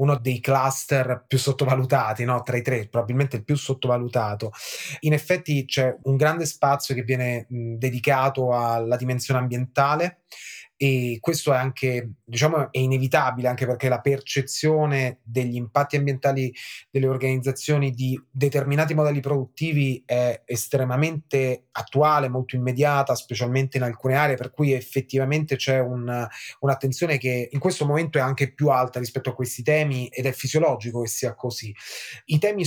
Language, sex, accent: Italian, male, native